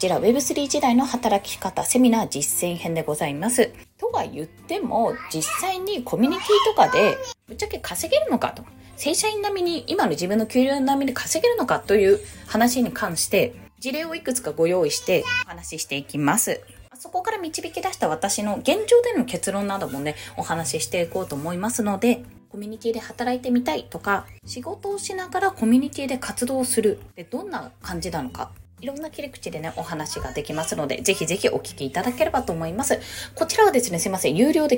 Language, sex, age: Japanese, female, 20-39